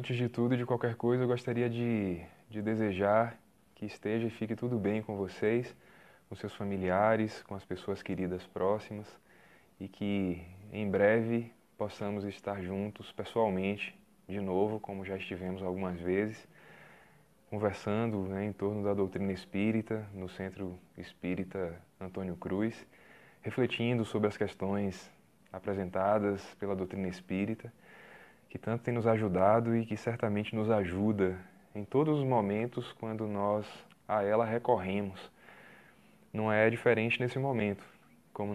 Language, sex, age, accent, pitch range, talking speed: Portuguese, male, 20-39, Brazilian, 95-115 Hz, 135 wpm